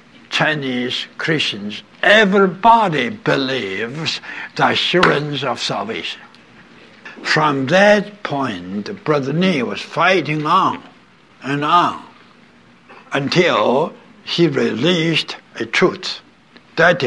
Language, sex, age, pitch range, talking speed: English, male, 60-79, 140-195 Hz, 85 wpm